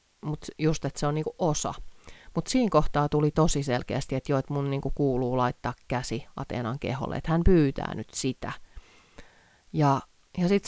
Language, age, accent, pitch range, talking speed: Finnish, 30-49, native, 135-170 Hz, 170 wpm